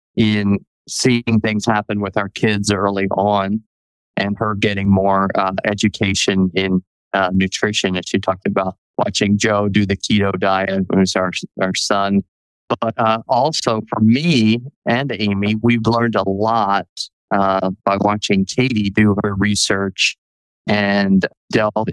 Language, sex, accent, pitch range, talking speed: English, male, American, 95-110 Hz, 140 wpm